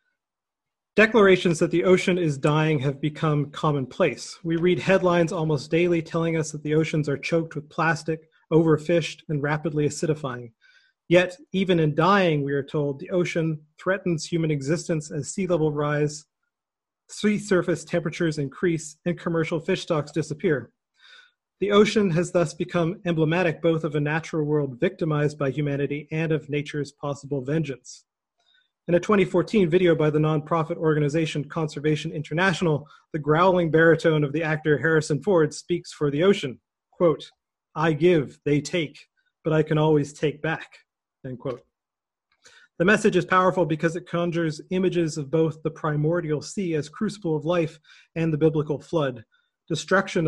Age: 30-49